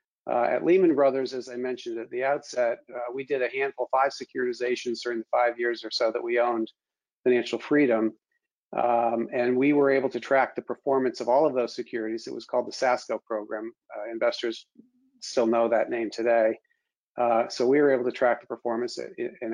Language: English